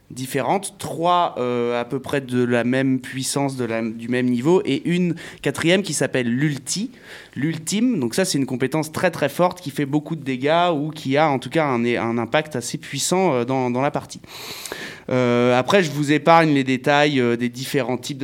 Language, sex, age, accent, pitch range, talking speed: French, male, 20-39, French, 120-155 Hz, 195 wpm